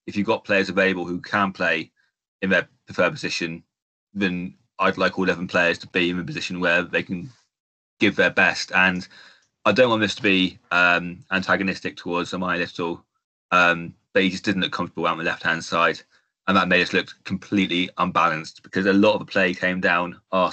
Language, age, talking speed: English, 30-49, 195 wpm